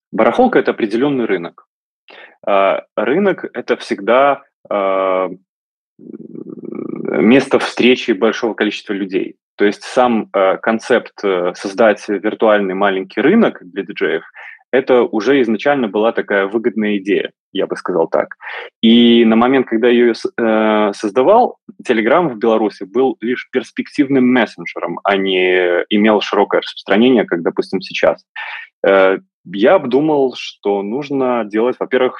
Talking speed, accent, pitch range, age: 115 wpm, native, 100-125 Hz, 20-39